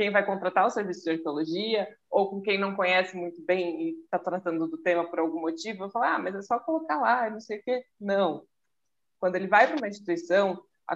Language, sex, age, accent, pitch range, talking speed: Portuguese, female, 20-39, Brazilian, 175-225 Hz, 230 wpm